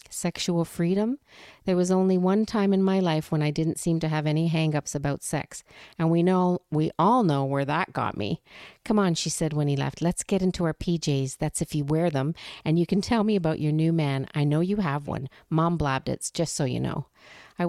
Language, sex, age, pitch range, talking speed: English, female, 40-59, 145-175 Hz, 230 wpm